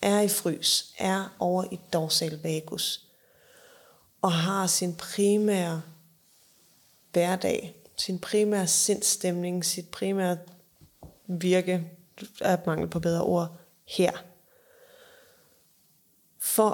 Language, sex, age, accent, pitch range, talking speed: Danish, female, 20-39, native, 175-200 Hz, 95 wpm